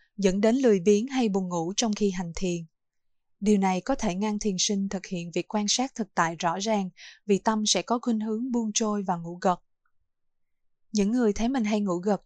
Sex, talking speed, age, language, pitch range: female, 220 wpm, 20-39, Vietnamese, 180-220 Hz